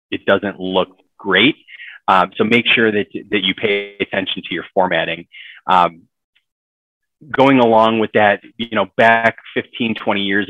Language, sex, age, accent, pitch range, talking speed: English, male, 20-39, American, 90-105 Hz, 155 wpm